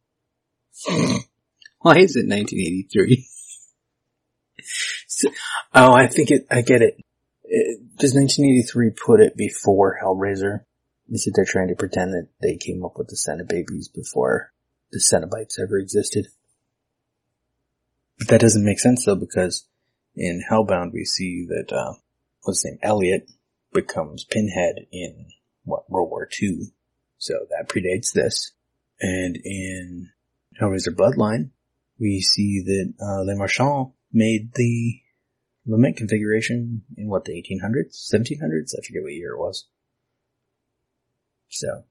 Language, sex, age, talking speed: English, male, 30-49, 130 wpm